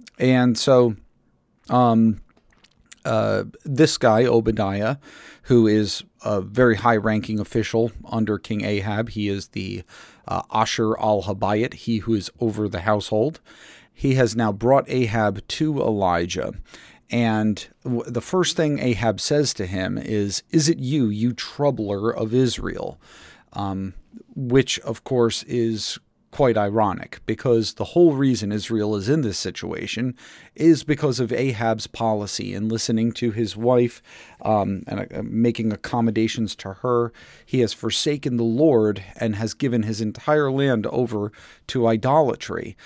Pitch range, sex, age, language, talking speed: 105-125 Hz, male, 40-59, English, 135 wpm